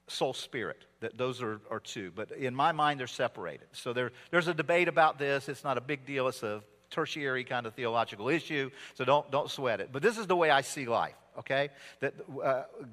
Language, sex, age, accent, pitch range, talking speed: English, male, 50-69, American, 135-195 Hz, 225 wpm